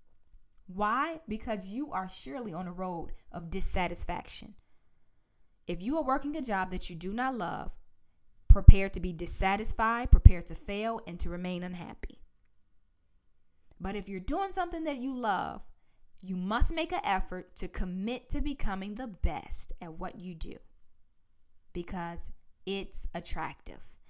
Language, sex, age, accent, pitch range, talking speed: English, female, 20-39, American, 180-235 Hz, 145 wpm